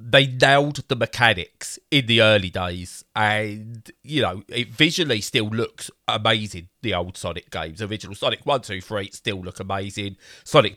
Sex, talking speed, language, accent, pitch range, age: male, 160 wpm, English, British, 100-125 Hz, 30-49